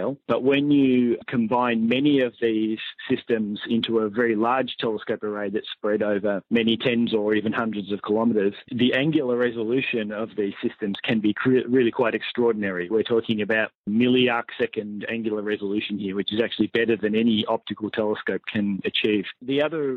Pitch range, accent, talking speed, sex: 110-125 Hz, Australian, 160 wpm, male